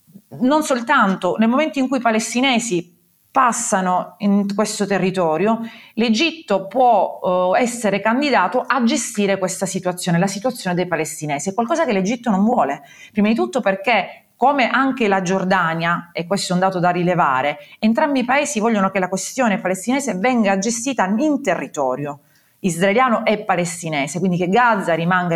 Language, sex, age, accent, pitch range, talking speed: Italian, female, 30-49, native, 180-225 Hz, 150 wpm